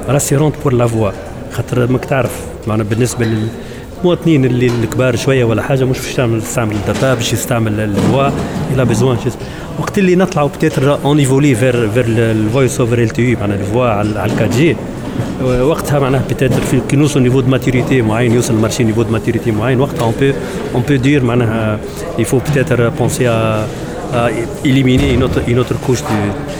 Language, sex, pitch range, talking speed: Arabic, male, 115-145 Hz, 145 wpm